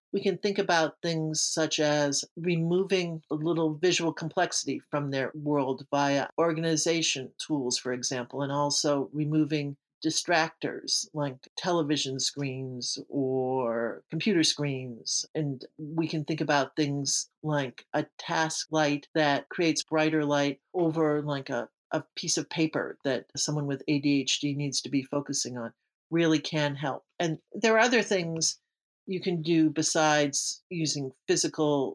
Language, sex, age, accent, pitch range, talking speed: English, male, 50-69, American, 140-165 Hz, 140 wpm